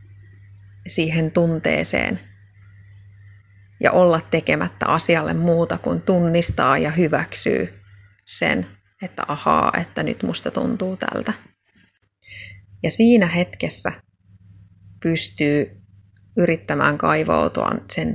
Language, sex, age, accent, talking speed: Finnish, female, 30-49, native, 85 wpm